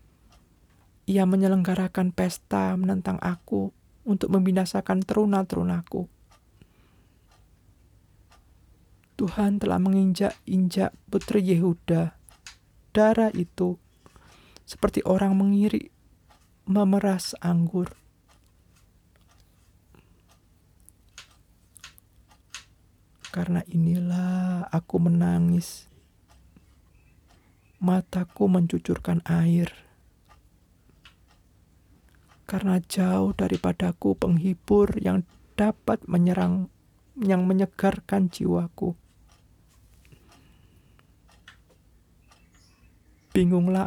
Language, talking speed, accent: Indonesian, 50 wpm, native